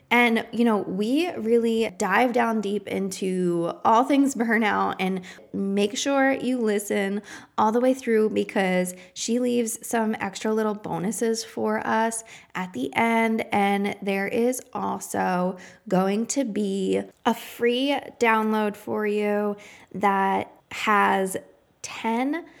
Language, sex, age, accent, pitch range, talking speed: English, female, 20-39, American, 195-235 Hz, 125 wpm